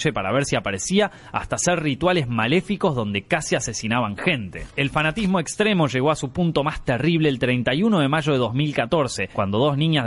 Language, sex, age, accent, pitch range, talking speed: Spanish, male, 20-39, Argentinian, 120-165 Hz, 180 wpm